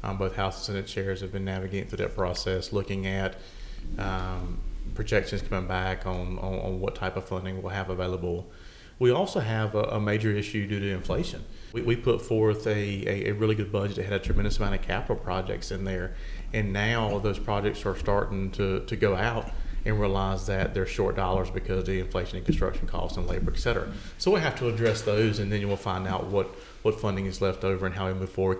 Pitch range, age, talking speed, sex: 95-105 Hz, 30-49, 225 wpm, male